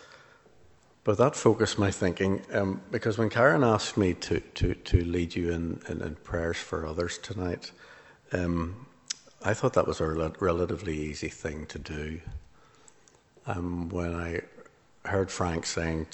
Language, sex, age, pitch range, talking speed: English, male, 60-79, 80-95 Hz, 150 wpm